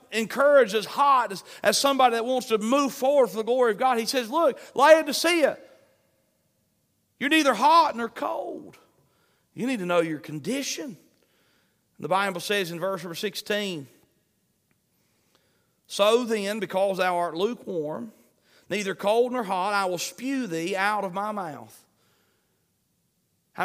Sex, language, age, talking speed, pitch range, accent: male, English, 40-59, 145 wpm, 155-230 Hz, American